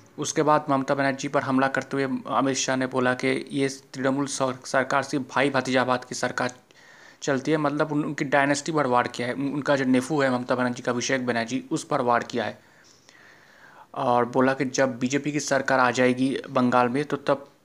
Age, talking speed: 20-39, 195 wpm